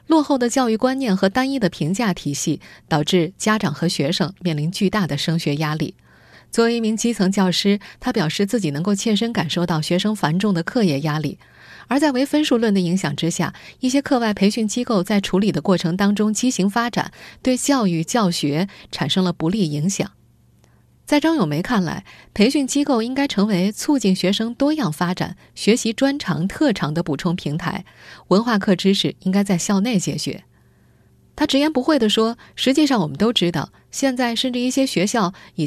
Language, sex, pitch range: Chinese, female, 170-250 Hz